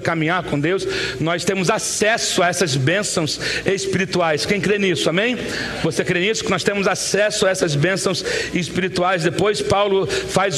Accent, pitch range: Brazilian, 180-220 Hz